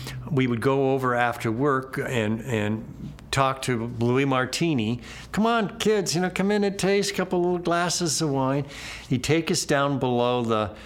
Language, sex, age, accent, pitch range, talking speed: English, male, 60-79, American, 105-135 Hz, 180 wpm